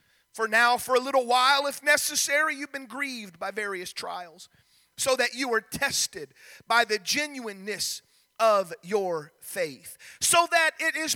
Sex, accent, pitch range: male, American, 215-295 Hz